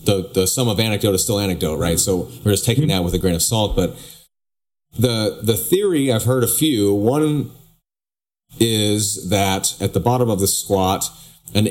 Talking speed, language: 190 wpm, English